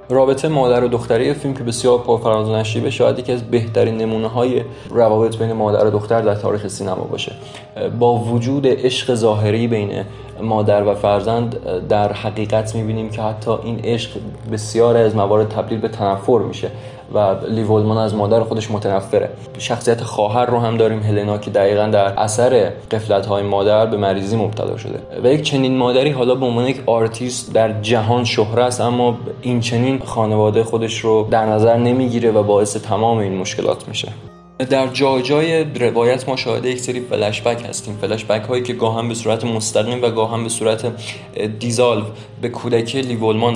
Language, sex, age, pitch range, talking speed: Persian, male, 20-39, 105-125 Hz, 170 wpm